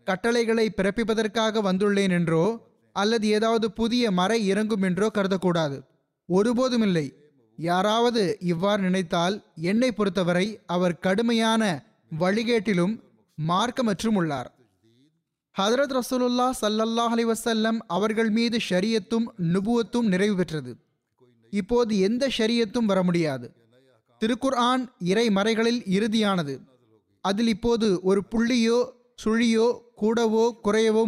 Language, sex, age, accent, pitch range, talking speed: Tamil, male, 20-39, native, 175-225 Hz, 95 wpm